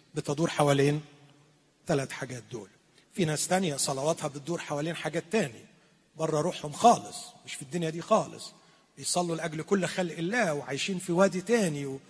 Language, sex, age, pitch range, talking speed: Arabic, male, 40-59, 150-210 Hz, 150 wpm